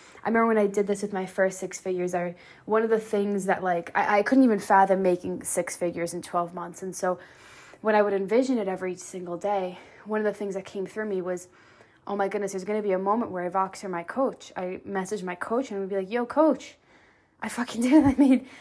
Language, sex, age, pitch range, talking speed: English, female, 20-39, 190-235 Hz, 255 wpm